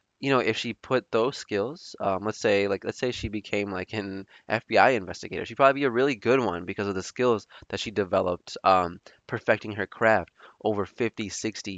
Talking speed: 205 wpm